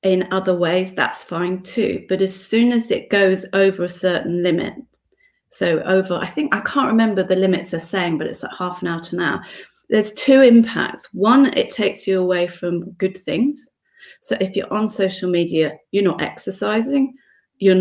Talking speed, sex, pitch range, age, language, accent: 190 wpm, female, 180-220 Hz, 30-49, English, British